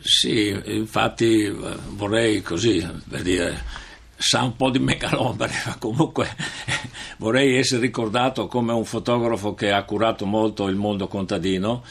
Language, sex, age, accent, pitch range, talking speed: Italian, male, 60-79, native, 100-115 Hz, 130 wpm